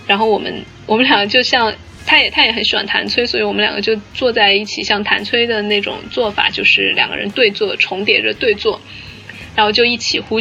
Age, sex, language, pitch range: 20-39, female, Chinese, 205-240 Hz